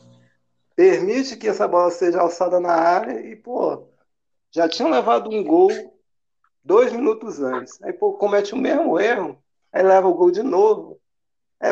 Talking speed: 160 wpm